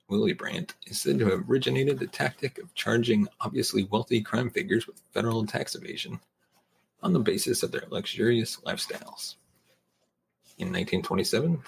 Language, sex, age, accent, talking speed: English, male, 40-59, American, 145 wpm